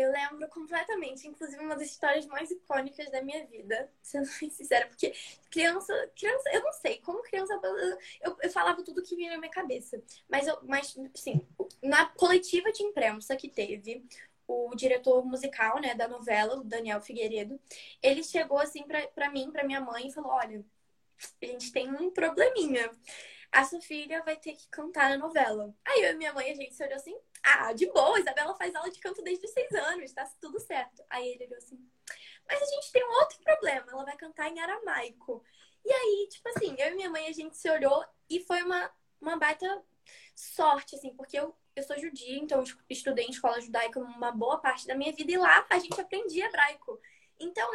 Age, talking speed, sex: 10-29, 200 wpm, female